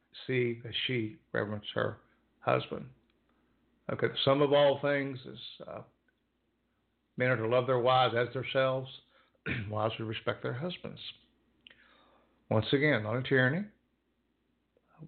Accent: American